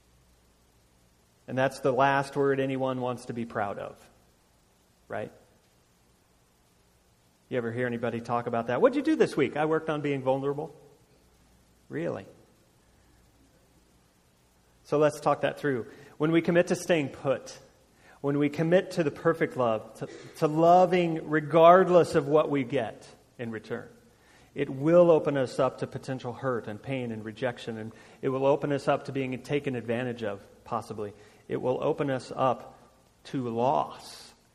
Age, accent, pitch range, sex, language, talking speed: 40-59, American, 105-155 Hz, male, English, 155 wpm